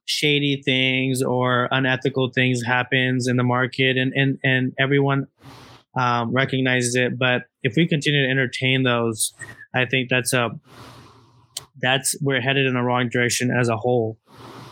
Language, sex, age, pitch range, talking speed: English, male, 20-39, 125-140 Hz, 150 wpm